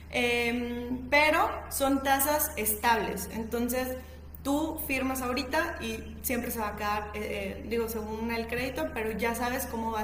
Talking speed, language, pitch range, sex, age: 155 wpm, Spanish, 220-275 Hz, female, 20-39